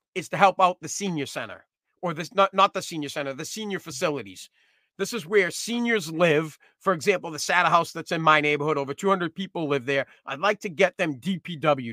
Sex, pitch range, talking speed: male, 160-210 Hz, 210 wpm